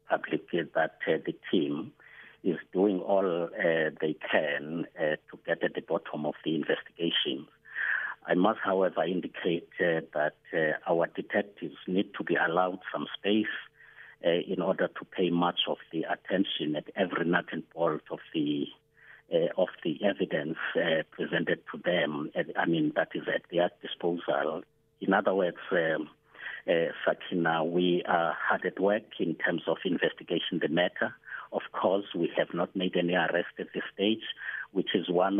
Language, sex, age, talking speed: English, male, 60-79, 170 wpm